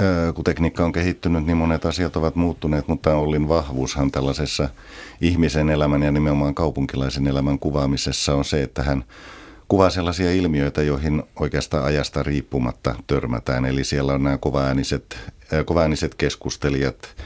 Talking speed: 130 wpm